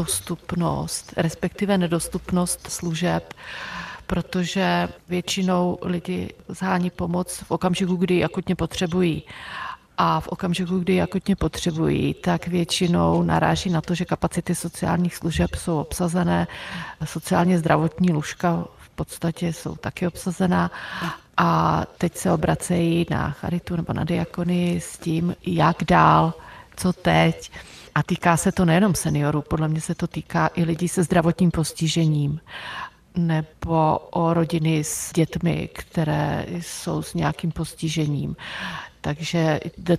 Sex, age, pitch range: female, 40-59, 160-180 Hz